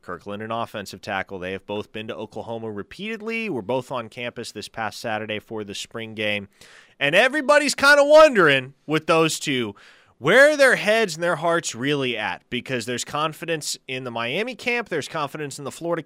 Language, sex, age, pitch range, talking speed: English, male, 20-39, 125-200 Hz, 190 wpm